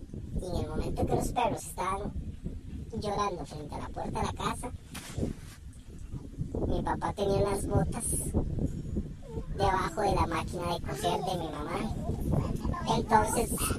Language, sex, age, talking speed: Spanish, male, 30-49, 135 wpm